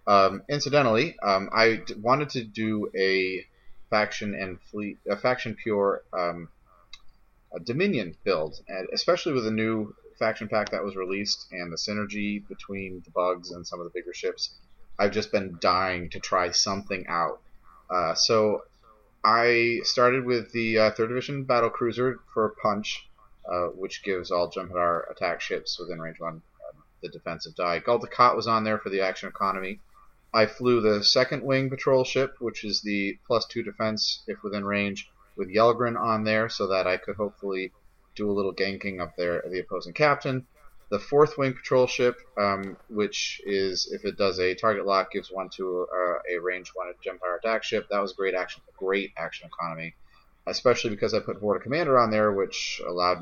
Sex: male